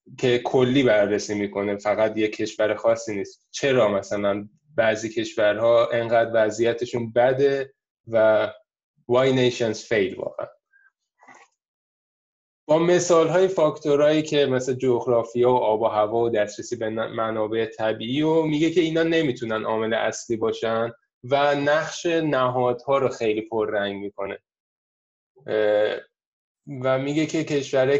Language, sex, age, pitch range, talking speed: Persian, male, 20-39, 110-145 Hz, 120 wpm